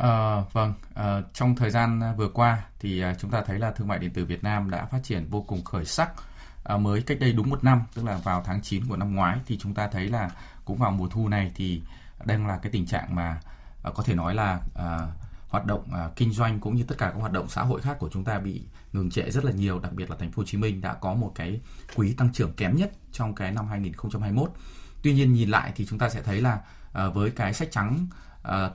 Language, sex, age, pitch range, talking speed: Vietnamese, male, 20-39, 95-120 Hz, 260 wpm